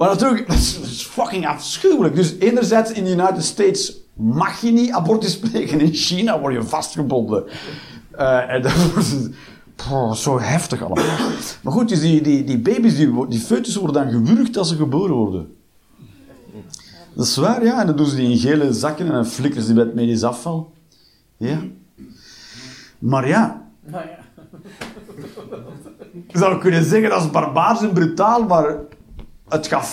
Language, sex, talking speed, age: Dutch, male, 170 wpm, 50-69